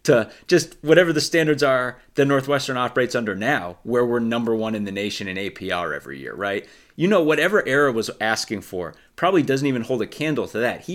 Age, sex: 30-49, male